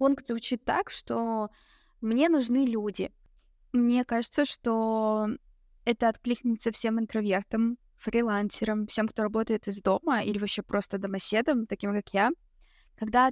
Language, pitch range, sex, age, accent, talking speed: Russian, 205-240 Hz, female, 20-39, native, 125 wpm